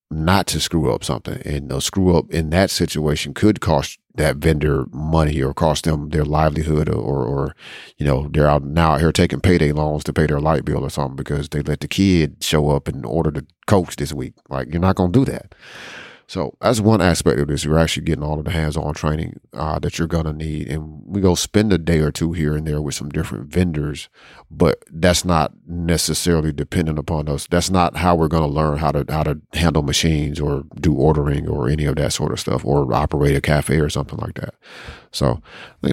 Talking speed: 225 wpm